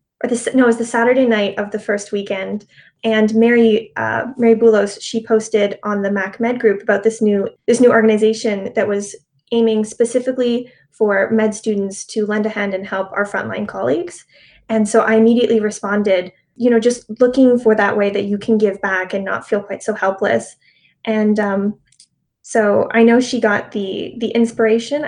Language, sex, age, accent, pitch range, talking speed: English, female, 20-39, American, 205-235 Hz, 190 wpm